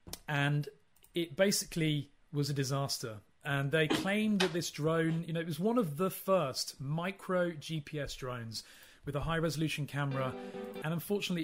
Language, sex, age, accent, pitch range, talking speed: English, male, 30-49, British, 140-180 Hz, 155 wpm